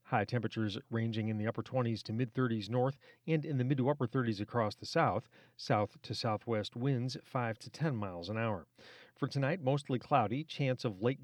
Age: 40-59